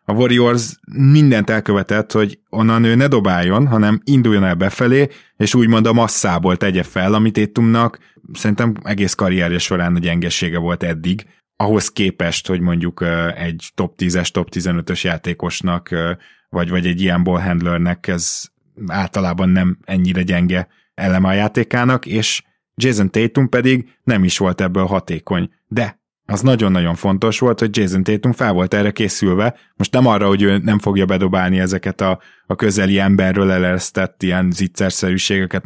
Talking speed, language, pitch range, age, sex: 150 wpm, Hungarian, 90-110 Hz, 20-39, male